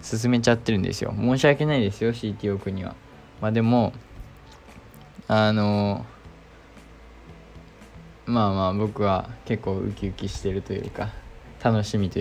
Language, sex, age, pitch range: Japanese, male, 20-39, 95-125 Hz